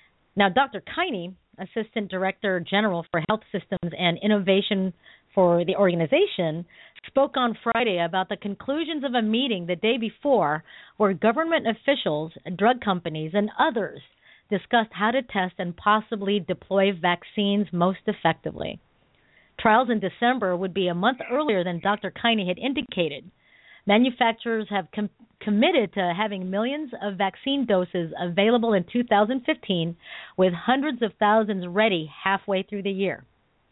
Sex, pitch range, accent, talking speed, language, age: female, 180-230 Hz, American, 135 wpm, English, 40-59